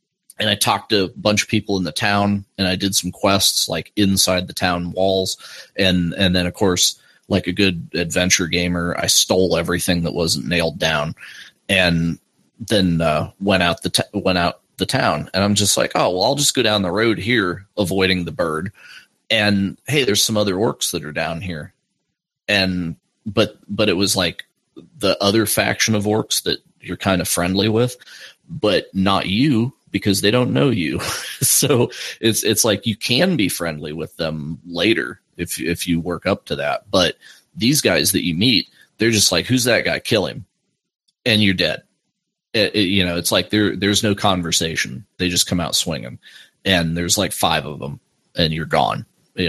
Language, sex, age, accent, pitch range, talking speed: English, male, 30-49, American, 85-105 Hz, 195 wpm